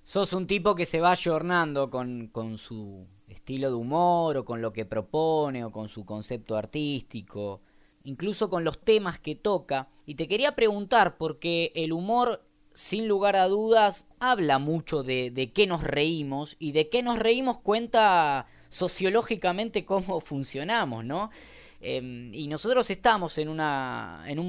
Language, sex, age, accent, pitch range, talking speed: Spanish, female, 20-39, Argentinian, 140-195 Hz, 160 wpm